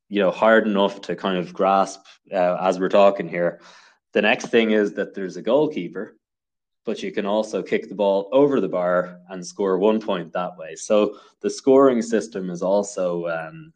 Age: 20-39